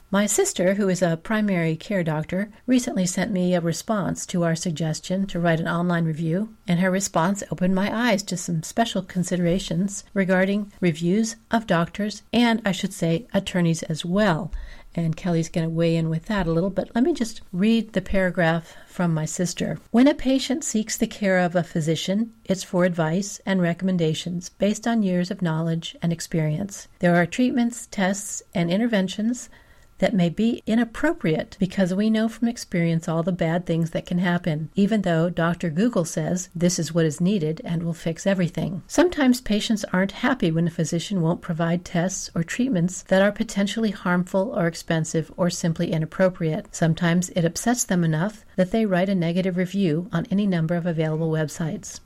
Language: English